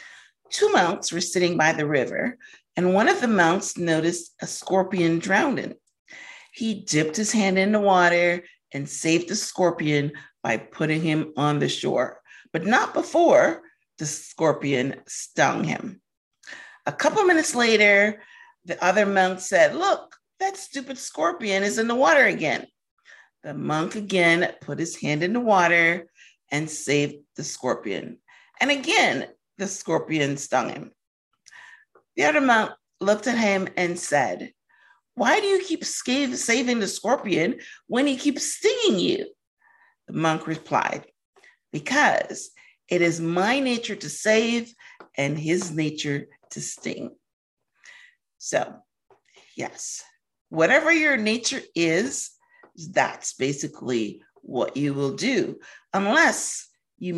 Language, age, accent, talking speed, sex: English, 40-59, American, 130 wpm, female